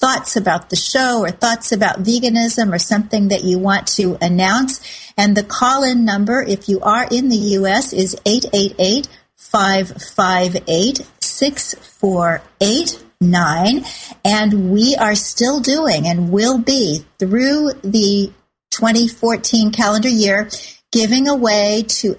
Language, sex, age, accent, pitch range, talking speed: English, female, 50-69, American, 195-235 Hz, 115 wpm